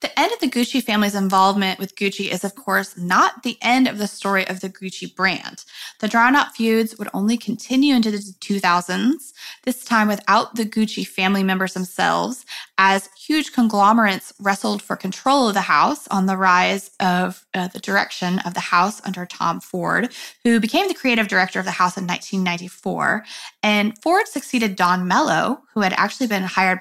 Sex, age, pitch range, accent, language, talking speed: female, 20-39, 190-245 Hz, American, English, 185 wpm